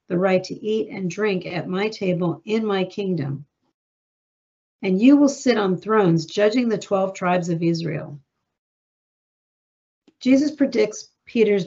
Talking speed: 140 wpm